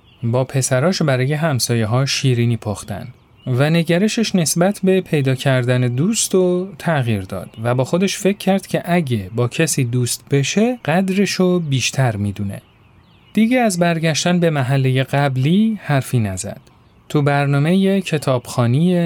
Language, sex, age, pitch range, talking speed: Persian, male, 30-49, 120-180 Hz, 130 wpm